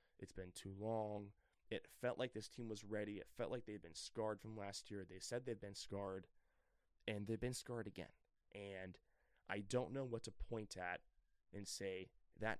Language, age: English, 20-39